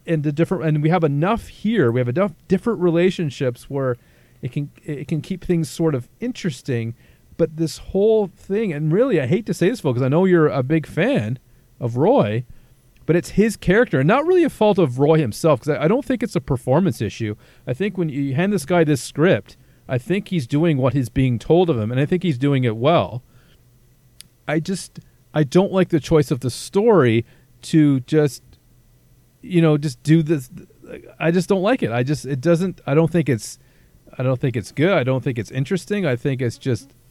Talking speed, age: 215 wpm, 40-59